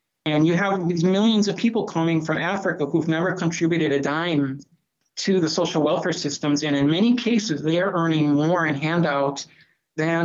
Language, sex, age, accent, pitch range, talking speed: English, male, 40-59, American, 145-175 Hz, 180 wpm